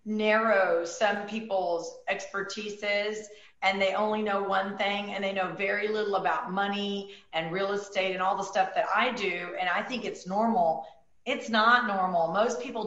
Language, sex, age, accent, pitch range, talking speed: English, female, 40-59, American, 190-220 Hz, 175 wpm